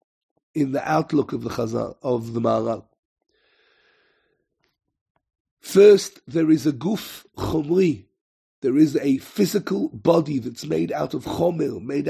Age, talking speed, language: 50-69, 130 wpm, English